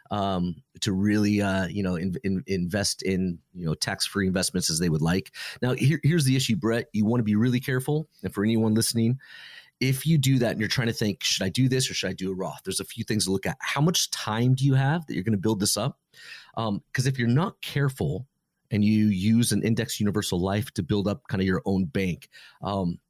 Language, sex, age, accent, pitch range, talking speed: English, male, 30-49, American, 95-125 Hz, 245 wpm